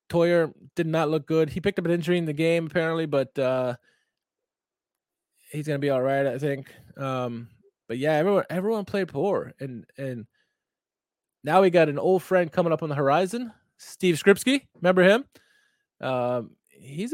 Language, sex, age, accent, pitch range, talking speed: English, male, 20-39, American, 135-185 Hz, 175 wpm